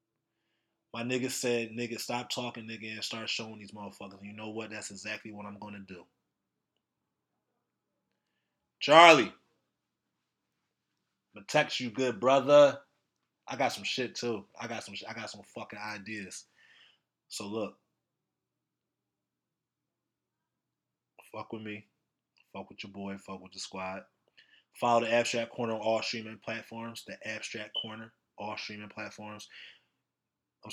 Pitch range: 105-150 Hz